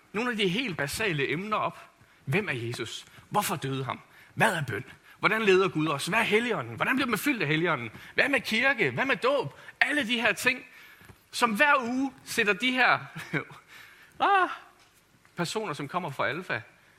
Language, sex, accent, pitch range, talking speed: Danish, male, native, 165-255 Hz, 185 wpm